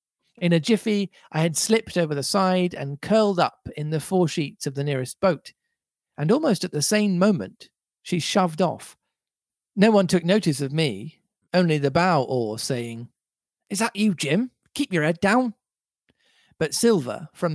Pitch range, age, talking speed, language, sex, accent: 135-185 Hz, 40-59, 175 wpm, English, male, British